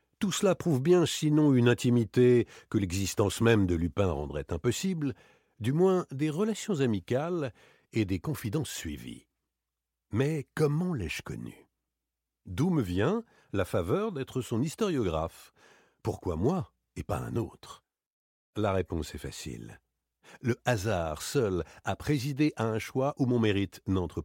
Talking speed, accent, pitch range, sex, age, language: 140 wpm, French, 100-150 Hz, male, 60-79, French